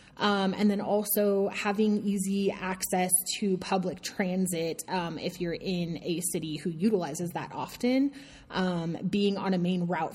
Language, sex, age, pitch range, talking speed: English, female, 20-39, 175-215 Hz, 155 wpm